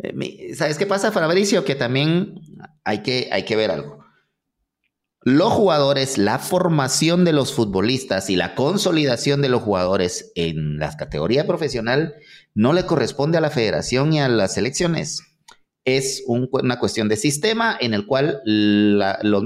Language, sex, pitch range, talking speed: English, male, 115-160 Hz, 145 wpm